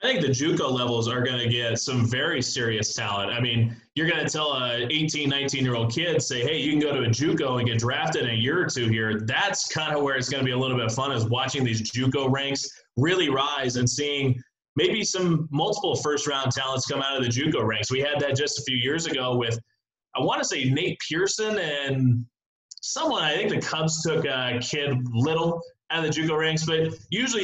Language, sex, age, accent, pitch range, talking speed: English, male, 20-39, American, 120-150 Hz, 225 wpm